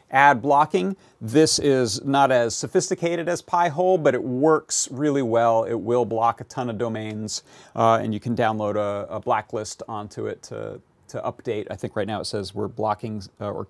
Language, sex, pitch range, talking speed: English, male, 115-155 Hz, 195 wpm